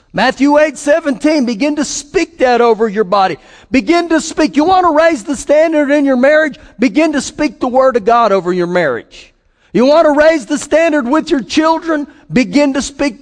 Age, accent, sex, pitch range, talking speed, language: 50-69, American, male, 175-270 Hz, 200 wpm, English